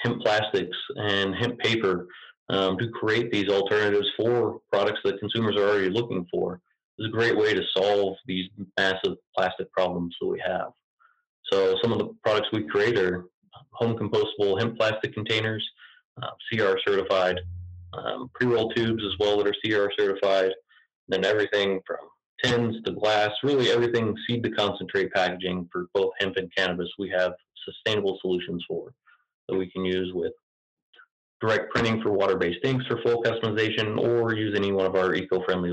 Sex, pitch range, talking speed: male, 95-120 Hz, 165 wpm